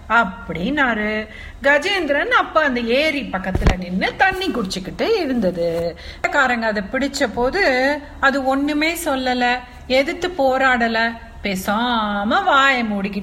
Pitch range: 190-275 Hz